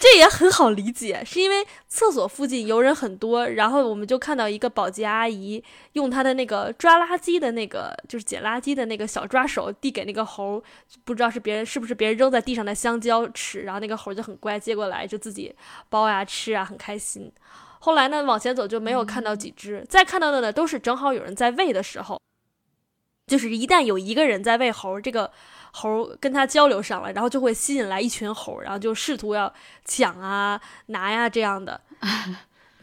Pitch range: 215-280 Hz